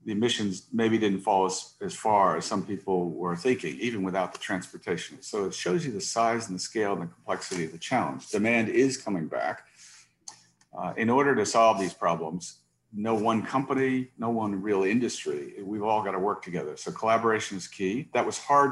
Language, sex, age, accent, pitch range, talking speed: English, male, 50-69, American, 95-110 Hz, 200 wpm